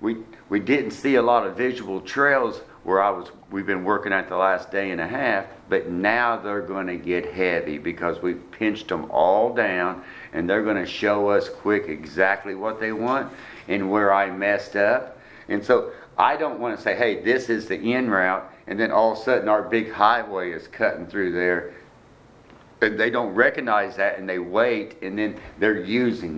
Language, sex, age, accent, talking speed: English, male, 60-79, American, 200 wpm